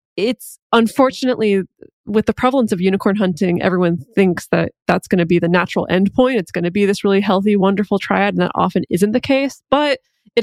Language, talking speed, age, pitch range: English, 200 wpm, 20-39, 180-215 Hz